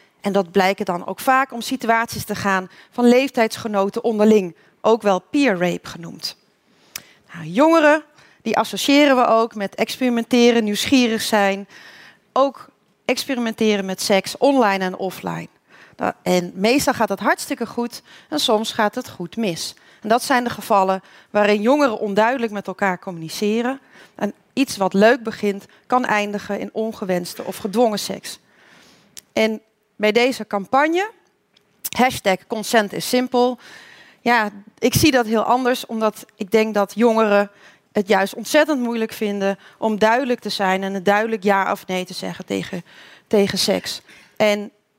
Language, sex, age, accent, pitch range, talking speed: Dutch, female, 40-59, Dutch, 200-240 Hz, 145 wpm